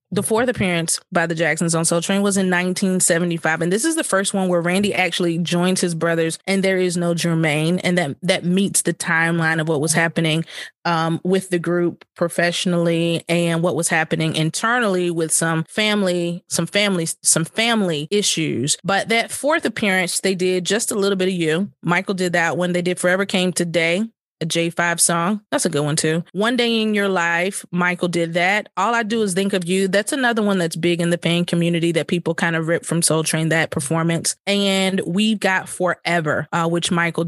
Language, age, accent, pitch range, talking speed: English, 20-39, American, 170-195 Hz, 205 wpm